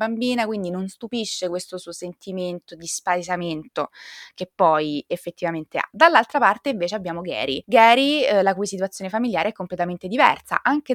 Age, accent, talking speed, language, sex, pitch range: 20-39, native, 155 wpm, Italian, female, 175-220 Hz